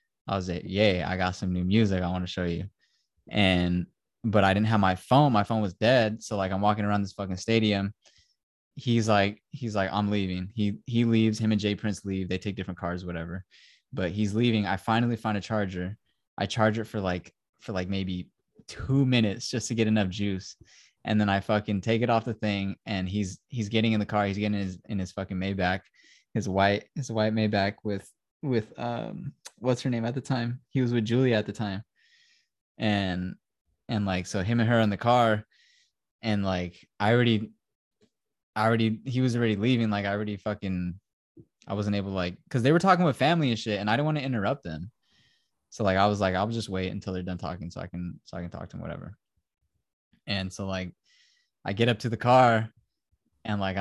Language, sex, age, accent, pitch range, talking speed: English, male, 20-39, American, 95-115 Hz, 220 wpm